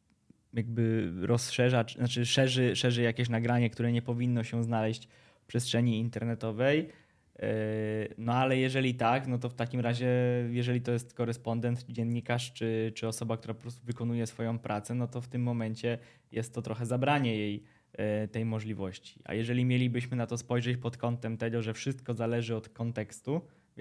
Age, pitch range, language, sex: 20-39, 110-120 Hz, Polish, male